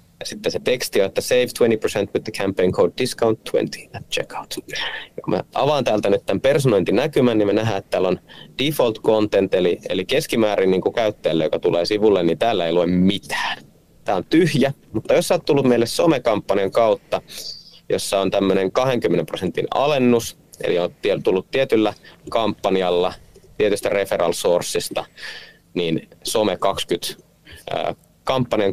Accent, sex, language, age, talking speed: native, male, Finnish, 30-49, 145 wpm